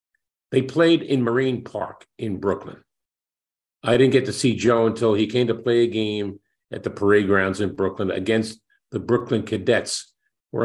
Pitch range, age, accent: 105-130 Hz, 50-69, American